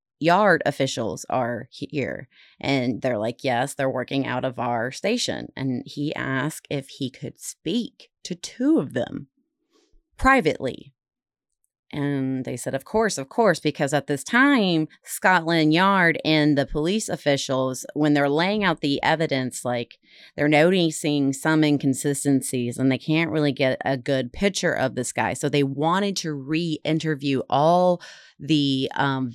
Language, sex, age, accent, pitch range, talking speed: English, female, 30-49, American, 130-155 Hz, 150 wpm